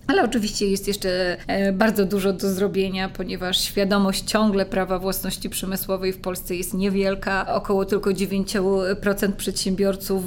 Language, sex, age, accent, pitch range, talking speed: Polish, female, 20-39, native, 195-220 Hz, 130 wpm